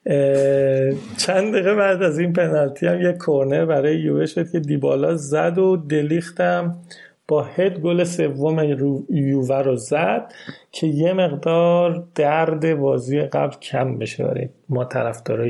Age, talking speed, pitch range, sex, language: 30-49, 140 wpm, 140-180 Hz, male, Persian